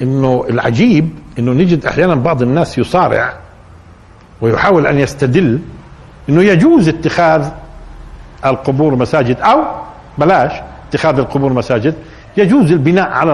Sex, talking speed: male, 110 wpm